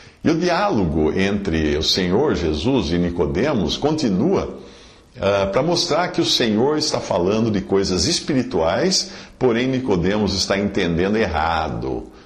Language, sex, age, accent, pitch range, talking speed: Portuguese, male, 50-69, Brazilian, 95-135 Hz, 125 wpm